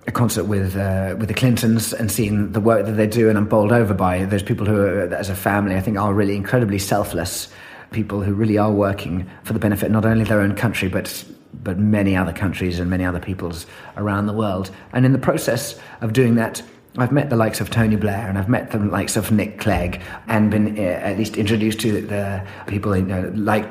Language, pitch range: English, 95-115 Hz